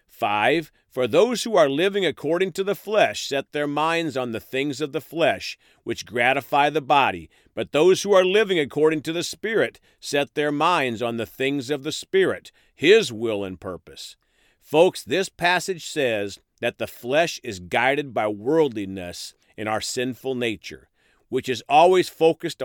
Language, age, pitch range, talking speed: English, 40-59, 120-175 Hz, 170 wpm